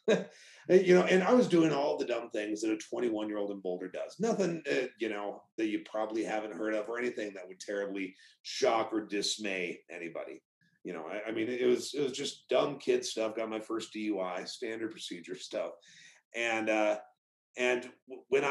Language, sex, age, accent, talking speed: English, male, 40-59, American, 200 wpm